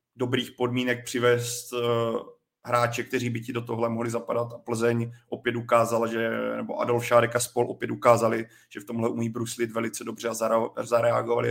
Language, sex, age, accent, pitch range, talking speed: Czech, male, 30-49, native, 120-130 Hz, 165 wpm